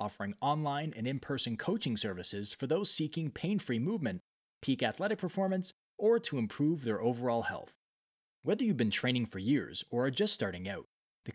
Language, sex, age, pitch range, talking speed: English, male, 20-39, 115-150 Hz, 170 wpm